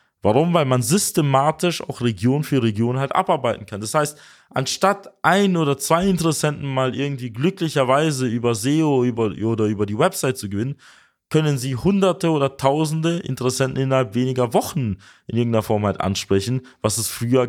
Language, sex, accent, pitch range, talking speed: German, male, German, 115-165 Hz, 160 wpm